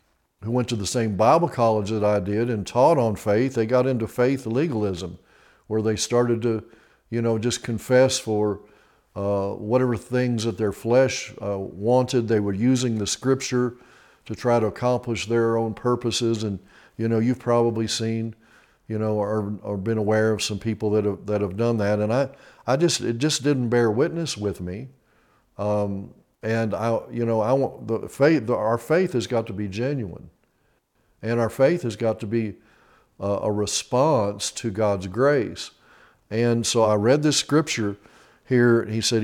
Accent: American